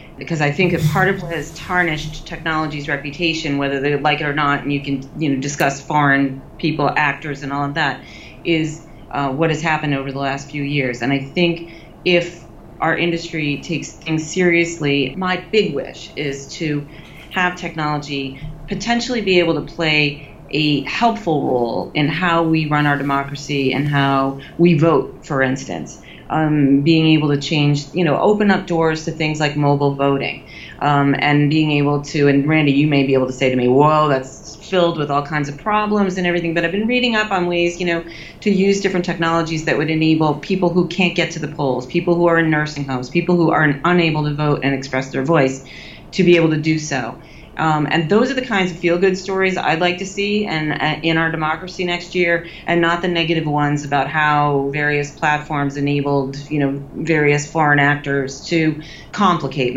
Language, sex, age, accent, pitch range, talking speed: English, female, 30-49, American, 145-170 Hz, 200 wpm